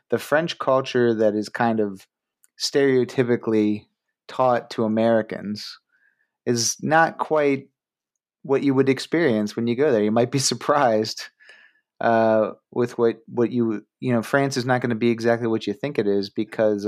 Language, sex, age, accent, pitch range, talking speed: English, male, 30-49, American, 105-120 Hz, 165 wpm